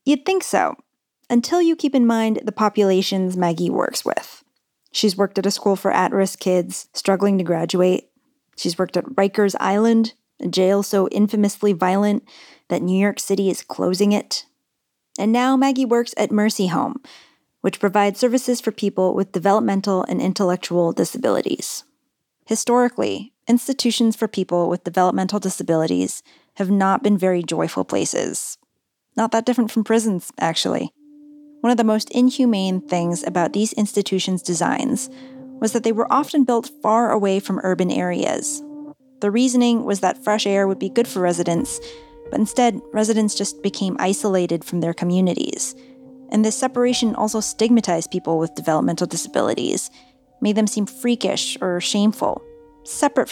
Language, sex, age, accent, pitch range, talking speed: English, female, 30-49, American, 185-240 Hz, 150 wpm